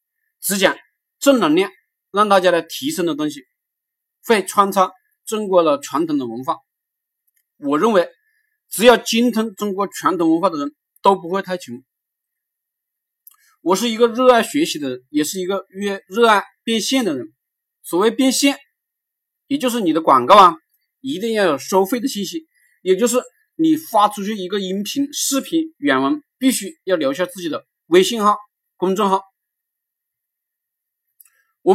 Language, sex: Chinese, male